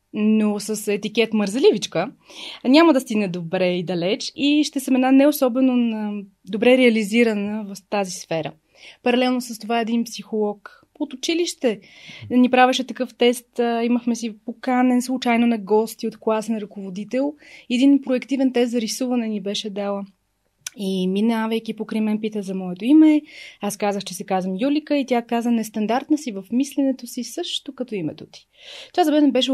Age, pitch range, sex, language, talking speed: 20-39, 205-255 Hz, female, Bulgarian, 155 wpm